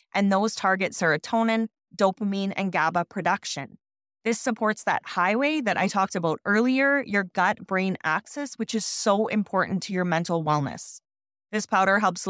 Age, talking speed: 30-49, 150 wpm